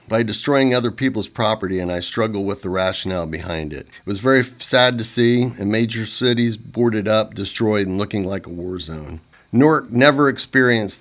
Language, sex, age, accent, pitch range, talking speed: English, male, 50-69, American, 95-120 Hz, 185 wpm